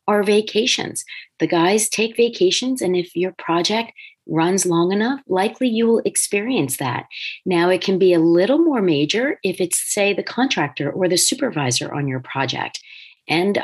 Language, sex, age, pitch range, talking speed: English, female, 40-59, 160-230 Hz, 165 wpm